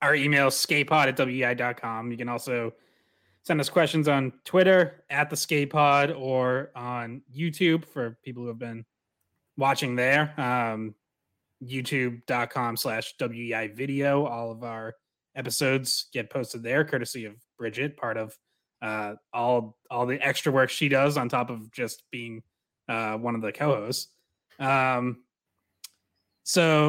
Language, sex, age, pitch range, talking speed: English, male, 20-39, 120-150 Hz, 145 wpm